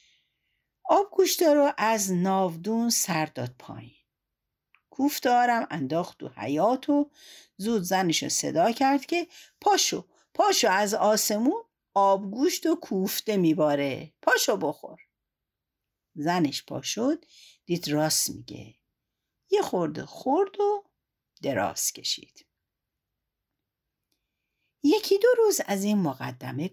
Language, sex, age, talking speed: Persian, female, 60-79, 105 wpm